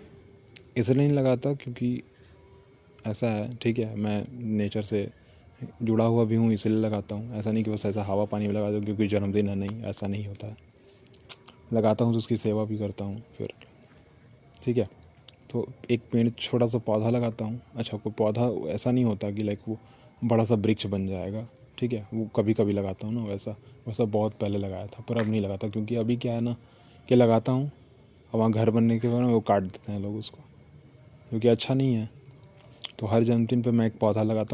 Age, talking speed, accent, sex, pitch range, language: 20-39, 205 wpm, native, male, 105-120 Hz, Hindi